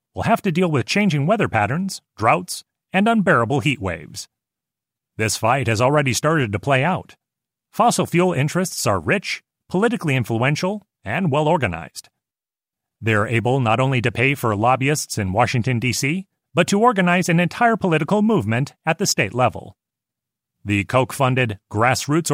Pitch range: 125-175 Hz